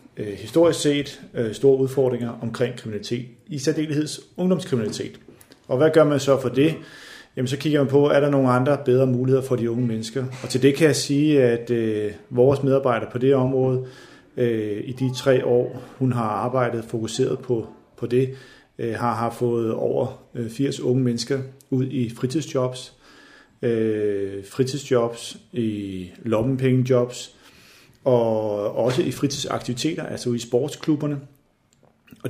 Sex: male